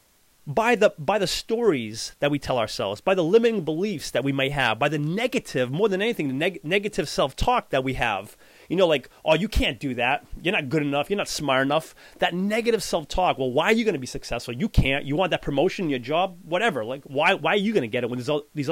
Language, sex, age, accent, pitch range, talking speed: English, male, 30-49, American, 145-210 Hz, 255 wpm